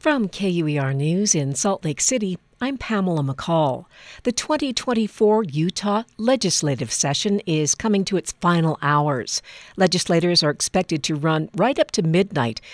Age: 60-79